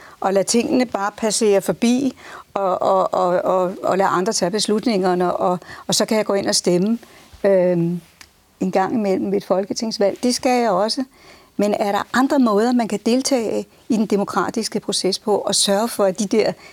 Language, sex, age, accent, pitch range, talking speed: Danish, female, 60-79, native, 185-235 Hz, 185 wpm